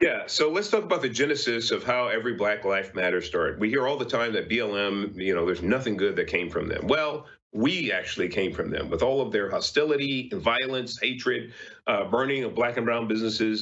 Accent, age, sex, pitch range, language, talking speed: American, 40-59, male, 95-150 Hz, English, 225 wpm